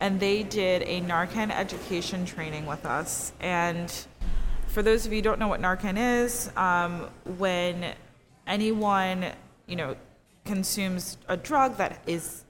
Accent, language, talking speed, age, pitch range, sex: American, English, 145 wpm, 20-39, 165-200 Hz, female